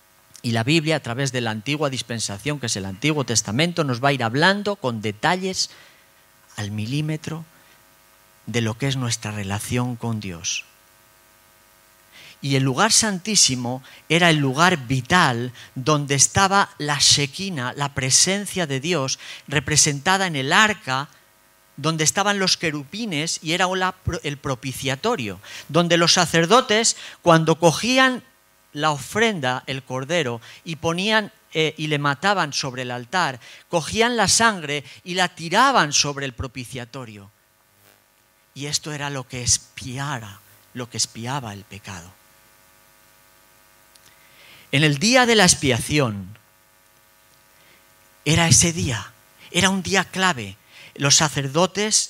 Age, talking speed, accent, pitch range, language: 40-59, 130 wpm, Spanish, 115-165 Hz, Spanish